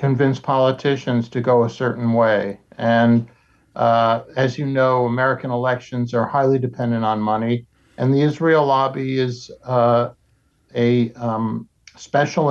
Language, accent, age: English, American, 60-79